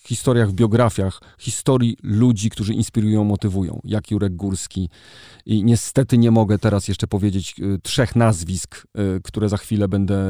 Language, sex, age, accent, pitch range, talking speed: Polish, male, 40-59, native, 100-120 Hz, 140 wpm